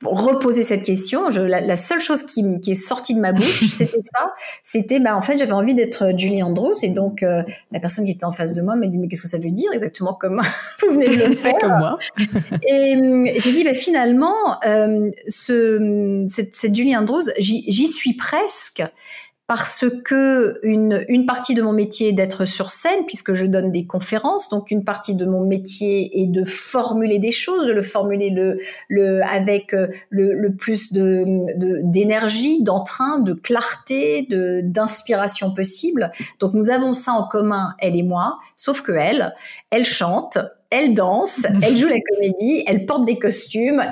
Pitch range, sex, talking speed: 185-230 Hz, female, 185 wpm